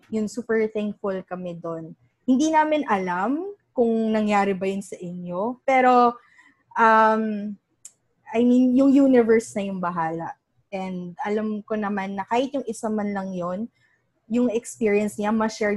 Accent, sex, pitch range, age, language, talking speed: native, female, 190-235 Hz, 20-39, Filipino, 145 wpm